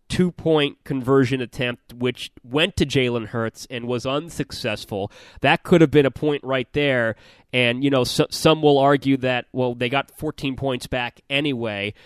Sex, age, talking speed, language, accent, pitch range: male, 30-49, 175 wpm, English, American, 120-150 Hz